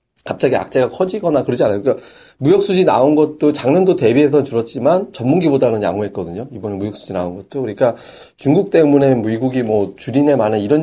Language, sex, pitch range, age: Korean, male, 115-150 Hz, 30-49